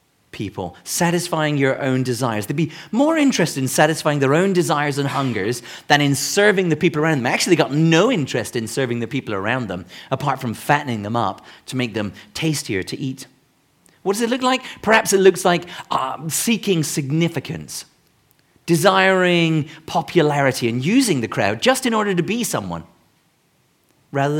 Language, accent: English, British